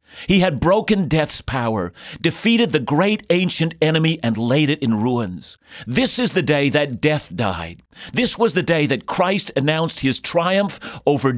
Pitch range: 125-180 Hz